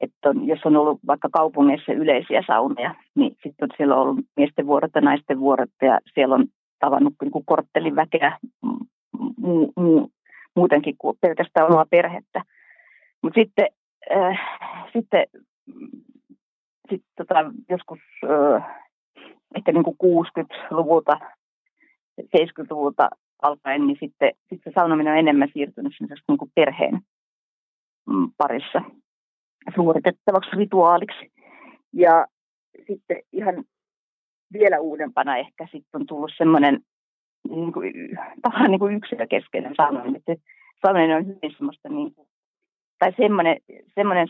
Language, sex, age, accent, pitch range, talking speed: Finnish, female, 30-49, native, 155-250 Hz, 115 wpm